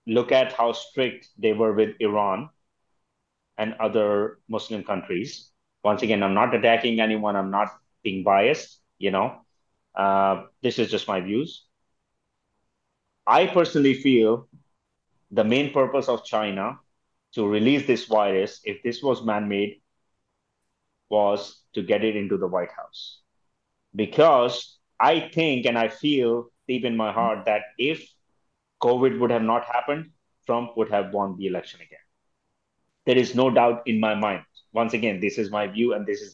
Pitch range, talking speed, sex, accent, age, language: 110-130 Hz, 155 wpm, male, Indian, 30-49, English